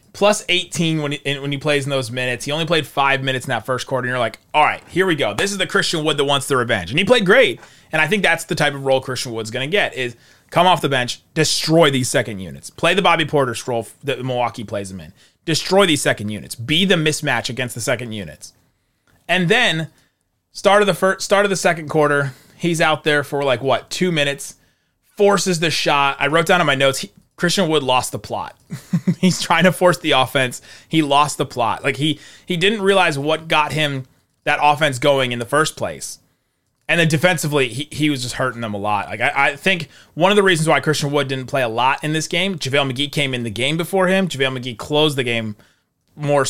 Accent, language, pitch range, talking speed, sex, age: American, English, 125-165 Hz, 230 wpm, male, 30-49